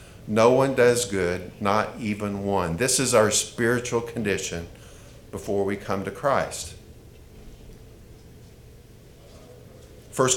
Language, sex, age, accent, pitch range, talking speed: English, male, 50-69, American, 100-120 Hz, 105 wpm